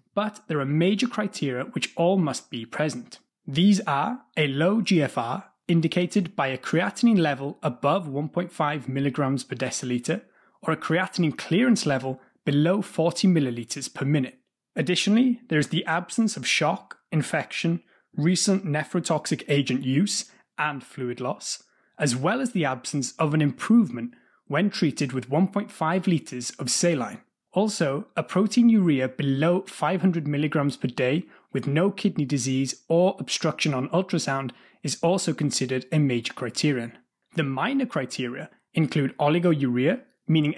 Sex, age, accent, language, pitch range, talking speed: male, 20-39, British, English, 140-185 Hz, 140 wpm